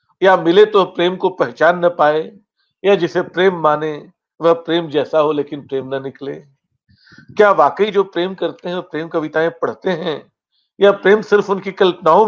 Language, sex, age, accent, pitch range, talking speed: Hindi, male, 50-69, native, 150-195 Hz, 175 wpm